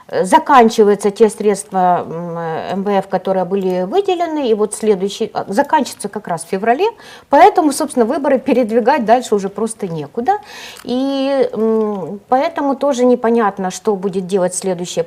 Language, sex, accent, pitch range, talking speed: Russian, female, native, 180-245 Hz, 125 wpm